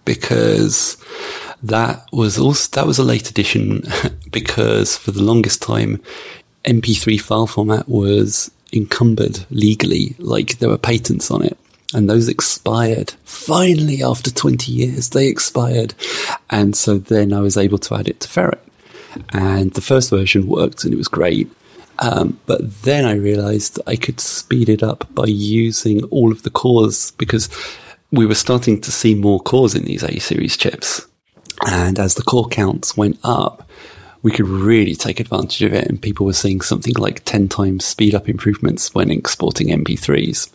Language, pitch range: English, 100-115 Hz